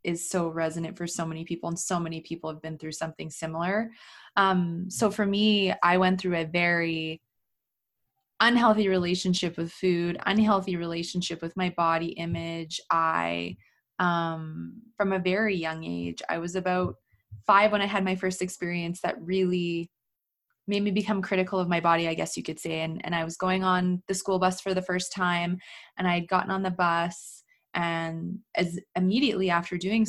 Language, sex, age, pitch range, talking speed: English, female, 20-39, 170-195 Hz, 180 wpm